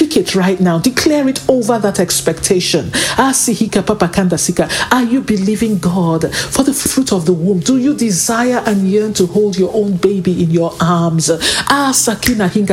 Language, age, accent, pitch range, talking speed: English, 50-69, Nigerian, 185-235 Hz, 145 wpm